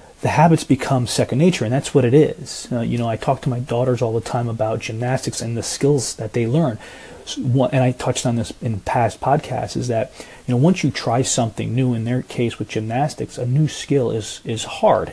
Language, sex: English, male